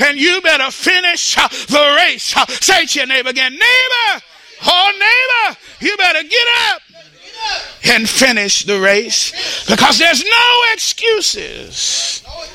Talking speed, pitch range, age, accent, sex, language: 135 wpm, 290-365 Hz, 50-69, American, male, English